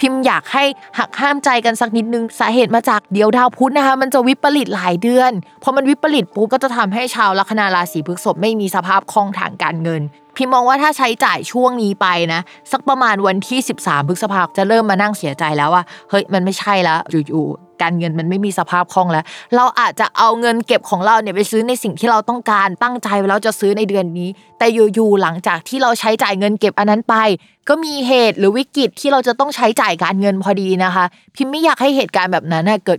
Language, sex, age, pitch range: Thai, female, 20-39, 185-245 Hz